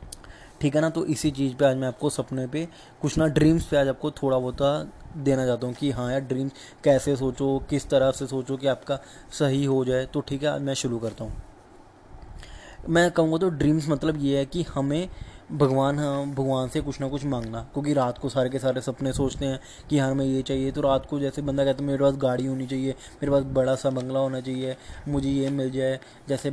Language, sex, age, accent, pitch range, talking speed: Hindi, male, 20-39, native, 130-145 Hz, 225 wpm